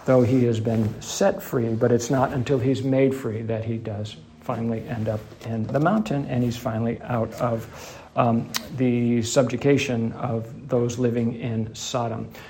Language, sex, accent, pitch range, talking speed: English, male, American, 120-135 Hz, 170 wpm